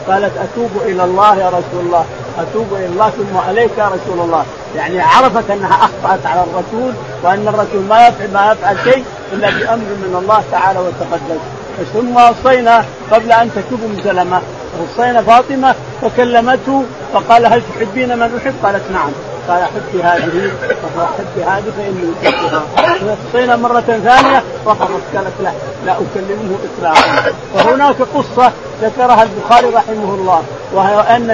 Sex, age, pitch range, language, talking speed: male, 40-59, 195-240 Hz, Arabic, 135 wpm